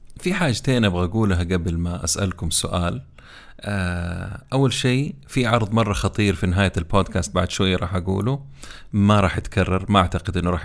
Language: Arabic